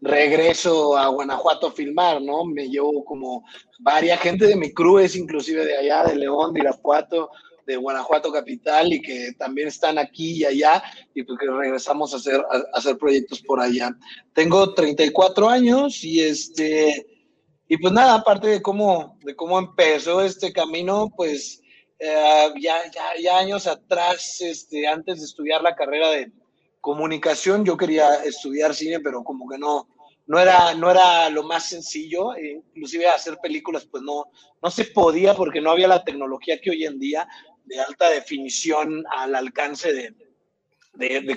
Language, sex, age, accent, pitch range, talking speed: English, male, 30-49, Mexican, 145-180 Hz, 165 wpm